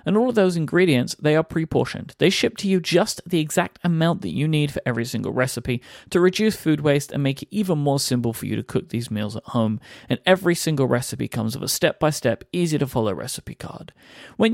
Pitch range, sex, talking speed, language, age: 125-170 Hz, male, 220 wpm, English, 40-59